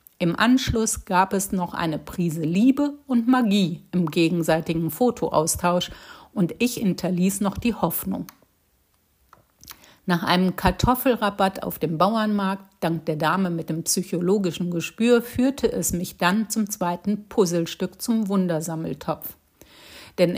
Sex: female